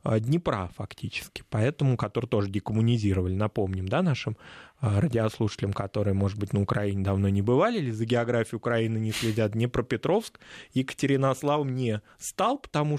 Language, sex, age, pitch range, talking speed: Russian, male, 20-39, 115-160 Hz, 135 wpm